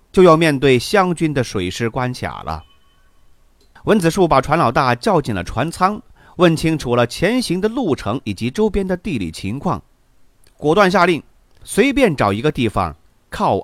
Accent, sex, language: native, male, Chinese